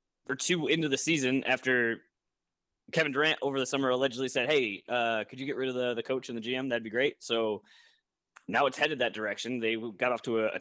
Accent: American